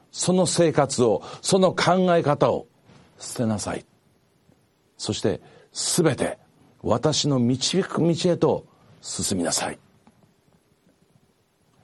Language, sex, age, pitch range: Japanese, male, 50-69, 110-155 Hz